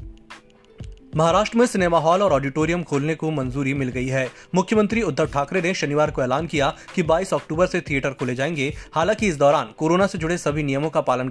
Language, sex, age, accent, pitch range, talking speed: Hindi, male, 20-39, native, 140-180 Hz, 195 wpm